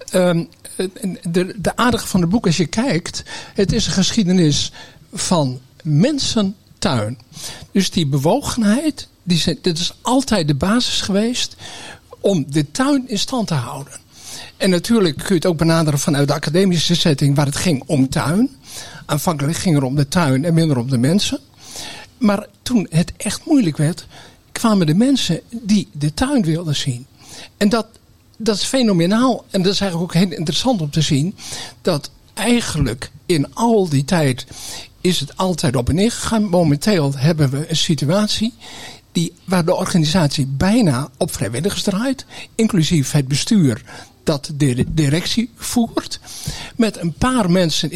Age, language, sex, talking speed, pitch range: 60-79, Dutch, male, 155 wpm, 145-210 Hz